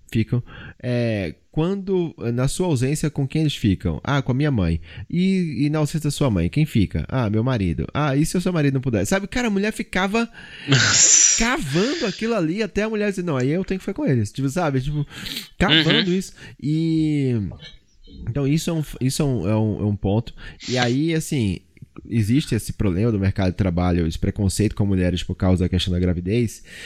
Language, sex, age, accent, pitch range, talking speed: Portuguese, male, 20-39, Brazilian, 105-150 Hz, 190 wpm